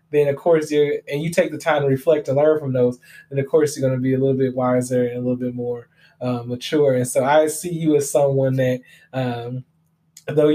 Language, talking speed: English, 245 wpm